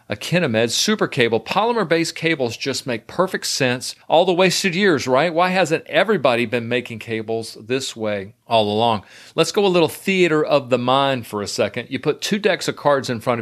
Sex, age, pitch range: male, 40-59, 110-145 Hz